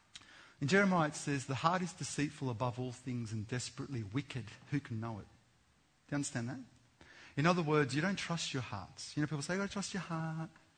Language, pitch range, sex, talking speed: English, 125-195 Hz, male, 210 wpm